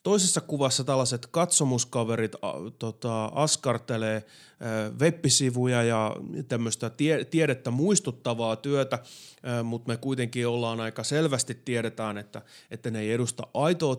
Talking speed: 105 wpm